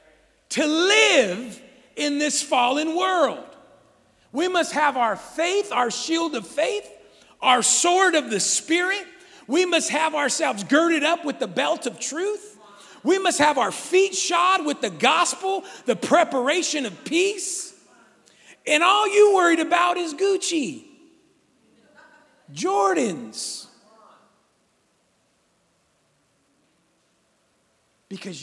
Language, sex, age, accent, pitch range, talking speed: English, male, 50-69, American, 225-335 Hz, 110 wpm